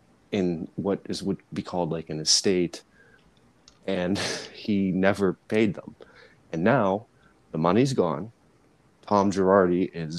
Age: 30-49